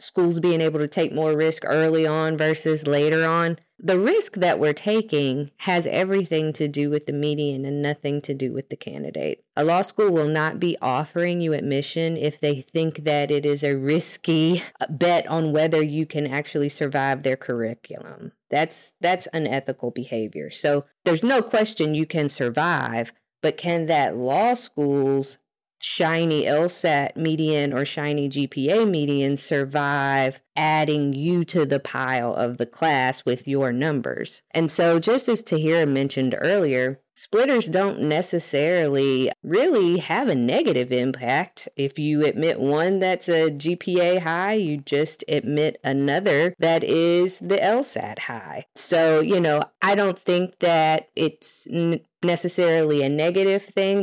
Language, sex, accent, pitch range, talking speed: English, female, American, 140-170 Hz, 150 wpm